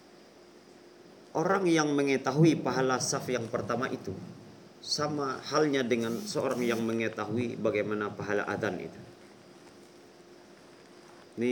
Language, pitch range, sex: Indonesian, 110-150 Hz, male